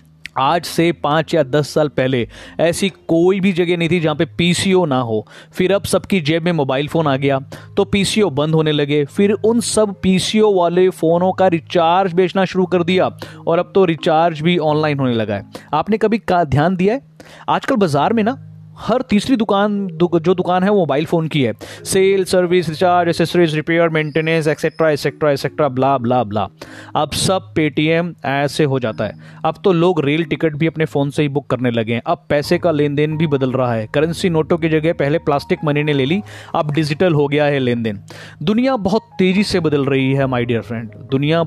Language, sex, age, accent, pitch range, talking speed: Hindi, male, 30-49, native, 145-185 Hz, 210 wpm